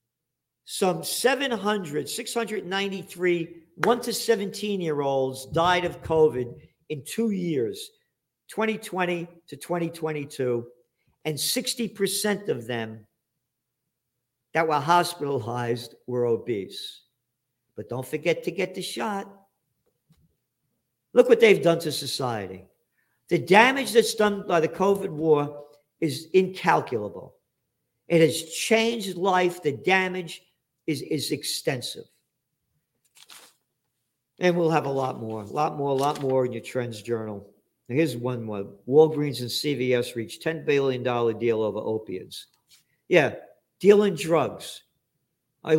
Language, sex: English, male